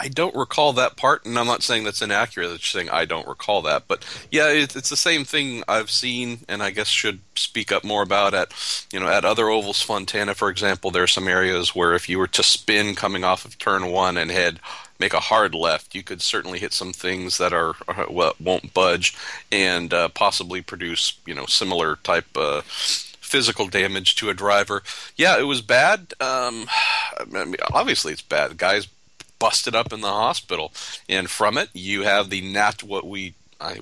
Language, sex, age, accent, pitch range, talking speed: English, male, 40-59, American, 100-120 Hz, 210 wpm